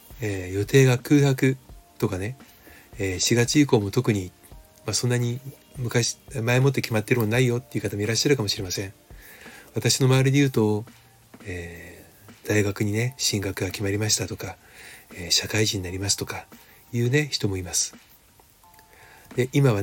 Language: Japanese